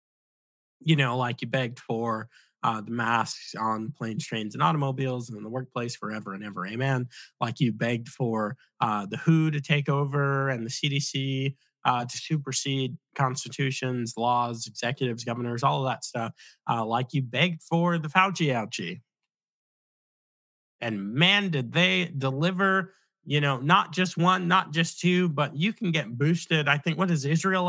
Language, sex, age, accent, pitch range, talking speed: English, male, 30-49, American, 125-165 Hz, 165 wpm